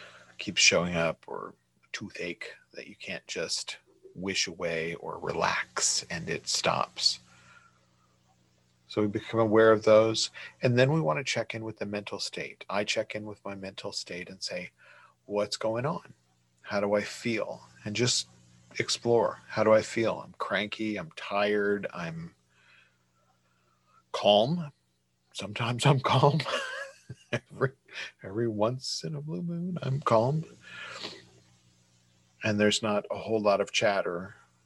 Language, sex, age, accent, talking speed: English, male, 40-59, American, 140 wpm